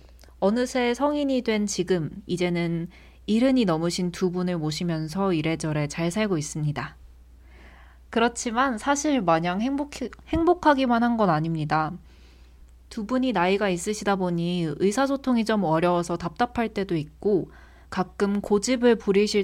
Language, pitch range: Korean, 165-240 Hz